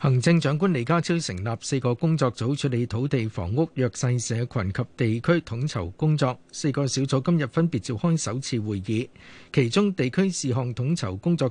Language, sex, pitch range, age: Chinese, male, 115-155 Hz, 50-69